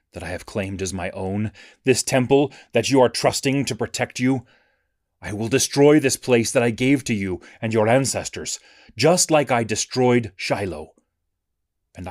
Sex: male